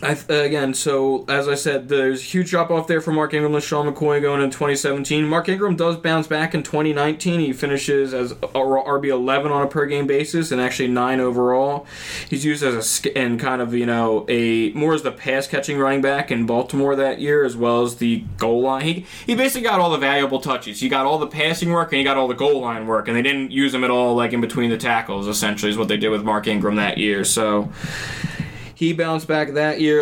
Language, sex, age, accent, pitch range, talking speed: English, male, 20-39, American, 125-150 Hz, 240 wpm